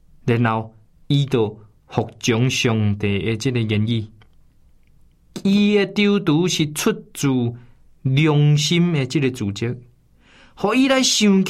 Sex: male